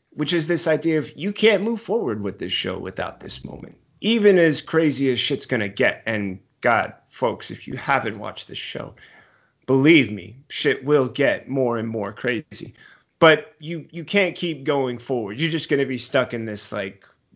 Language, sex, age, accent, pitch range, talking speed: English, male, 30-49, American, 120-155 Hz, 195 wpm